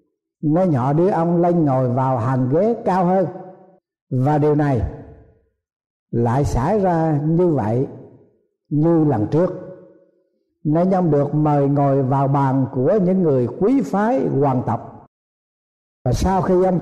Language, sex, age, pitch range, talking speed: Vietnamese, male, 60-79, 140-185 Hz, 145 wpm